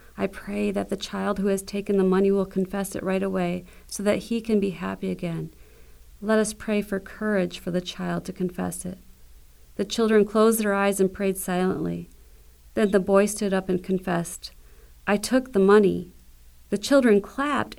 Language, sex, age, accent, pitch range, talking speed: English, female, 40-59, American, 160-205 Hz, 185 wpm